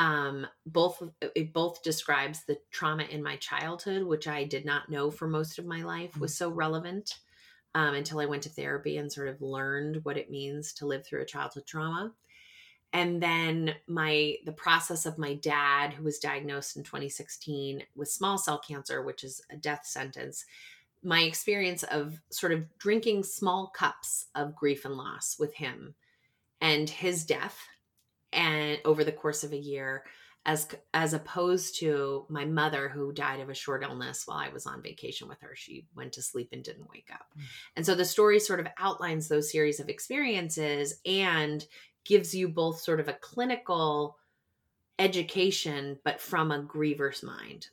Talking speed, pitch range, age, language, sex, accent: 175 wpm, 145-170 Hz, 30-49, English, female, American